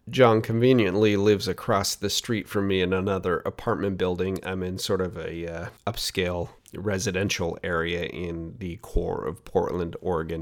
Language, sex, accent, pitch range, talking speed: English, male, American, 90-110 Hz, 155 wpm